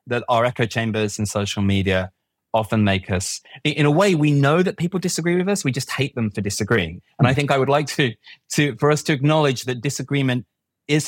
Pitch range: 100-140 Hz